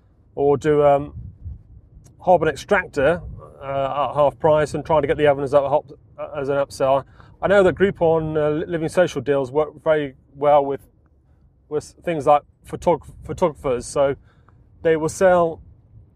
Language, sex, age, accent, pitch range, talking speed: English, male, 30-49, British, 110-150 Hz, 160 wpm